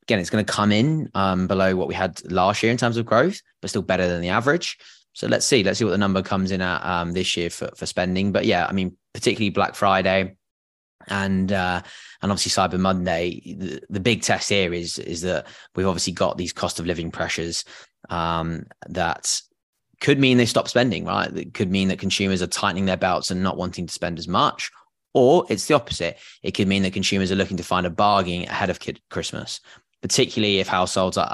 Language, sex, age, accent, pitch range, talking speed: English, male, 20-39, British, 90-100 Hz, 220 wpm